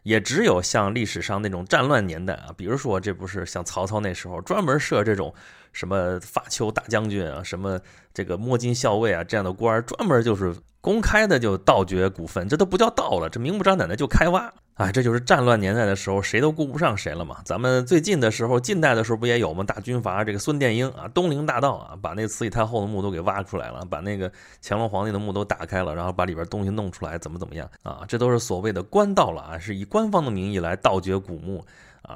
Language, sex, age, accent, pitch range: Chinese, male, 30-49, native, 95-125 Hz